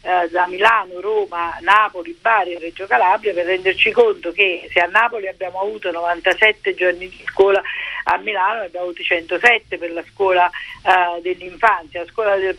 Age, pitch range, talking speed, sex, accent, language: 50-69, 180-225 Hz, 155 wpm, female, native, Italian